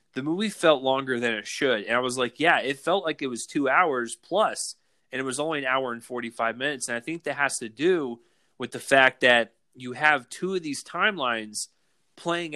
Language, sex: English, male